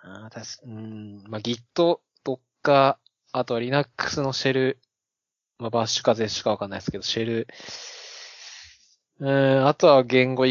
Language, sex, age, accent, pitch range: Japanese, male, 20-39, native, 115-170 Hz